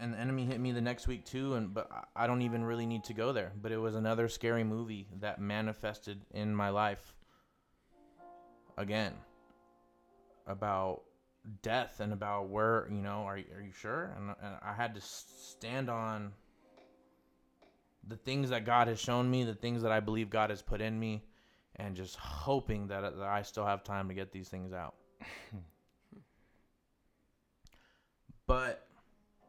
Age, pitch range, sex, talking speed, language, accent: 20-39, 100-115 Hz, male, 165 wpm, English, American